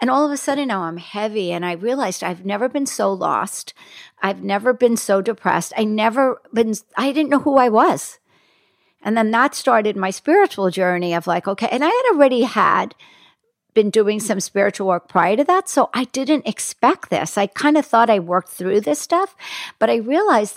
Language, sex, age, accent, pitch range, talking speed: English, female, 60-79, American, 190-265 Hz, 205 wpm